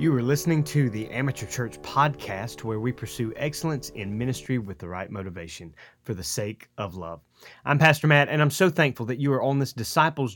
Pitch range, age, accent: 115-145 Hz, 30-49, American